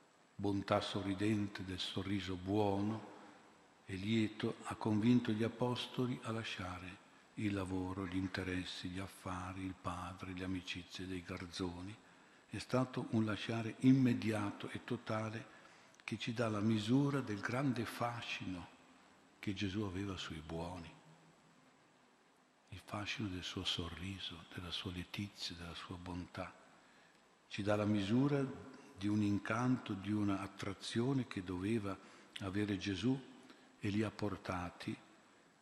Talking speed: 125 wpm